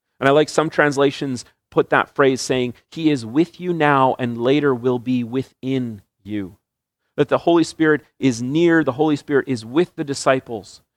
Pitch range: 120-150 Hz